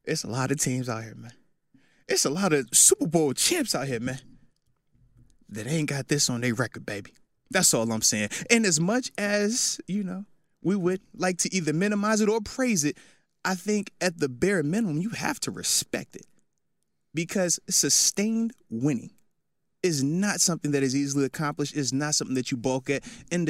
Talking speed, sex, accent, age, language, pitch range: 190 wpm, male, American, 20-39, English, 140-215 Hz